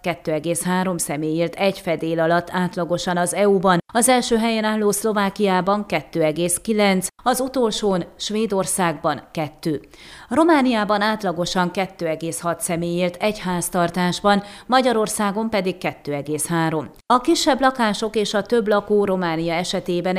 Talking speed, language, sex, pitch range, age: 105 wpm, Hungarian, female, 170-210 Hz, 30-49